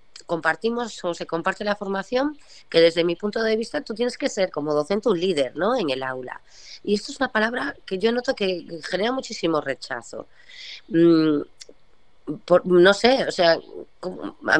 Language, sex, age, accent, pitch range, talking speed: Spanish, female, 20-39, Spanish, 155-195 Hz, 175 wpm